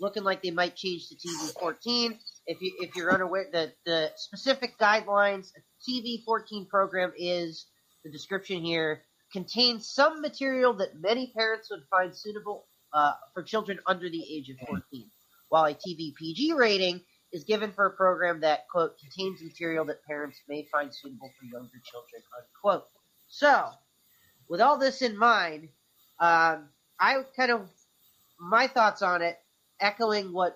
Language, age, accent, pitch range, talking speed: English, 30-49, American, 165-220 Hz, 150 wpm